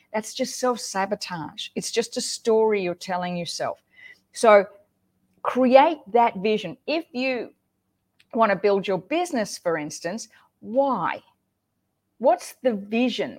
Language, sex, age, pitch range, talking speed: English, female, 40-59, 190-245 Hz, 120 wpm